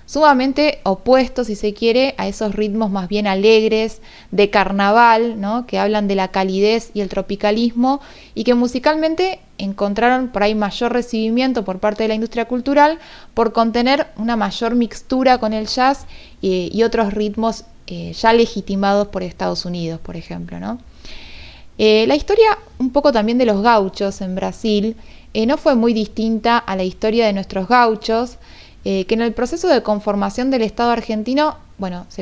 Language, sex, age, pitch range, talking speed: Spanish, female, 20-39, 195-235 Hz, 170 wpm